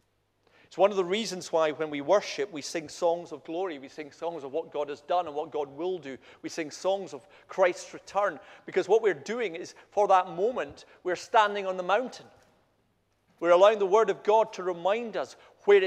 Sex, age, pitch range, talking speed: male, 40-59, 175-220 Hz, 210 wpm